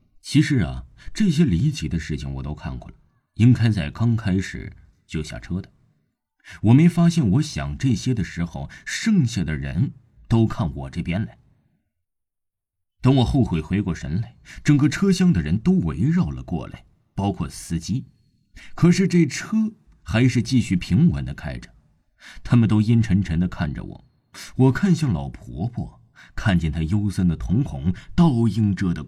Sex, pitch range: male, 85-130 Hz